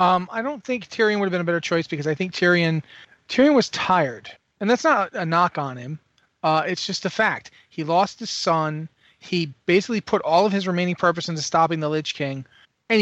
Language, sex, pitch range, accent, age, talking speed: English, male, 145-185 Hz, American, 30-49, 225 wpm